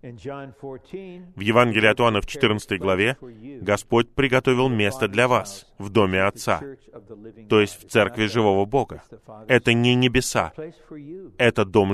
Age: 20-39